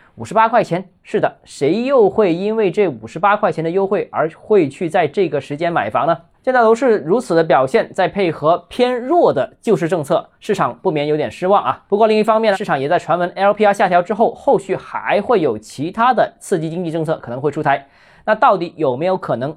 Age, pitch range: 20-39, 165-220 Hz